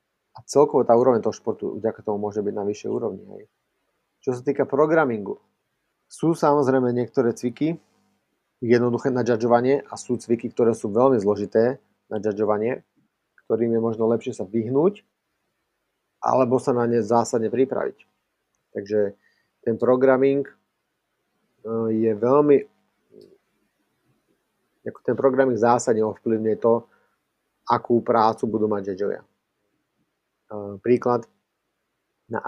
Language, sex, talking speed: Slovak, male, 115 wpm